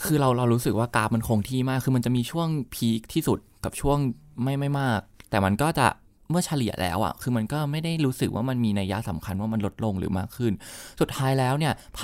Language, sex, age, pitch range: Thai, male, 20-39, 105-130 Hz